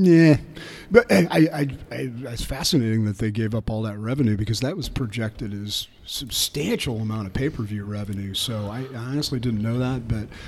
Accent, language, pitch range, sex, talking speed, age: American, English, 105-130 Hz, male, 190 wpm, 40-59